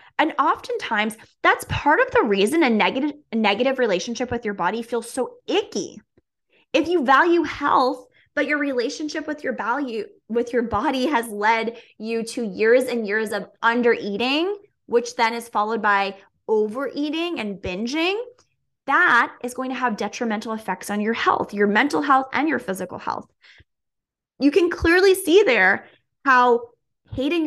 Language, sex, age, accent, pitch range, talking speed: English, female, 20-39, American, 215-300 Hz, 155 wpm